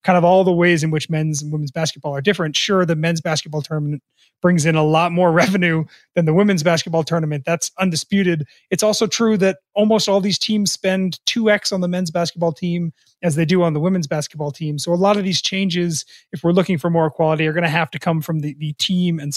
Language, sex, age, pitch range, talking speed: English, male, 30-49, 160-190 Hz, 240 wpm